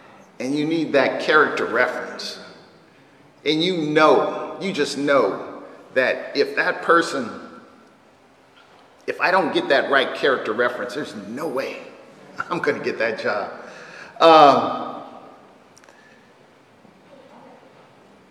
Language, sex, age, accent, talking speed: English, male, 50-69, American, 110 wpm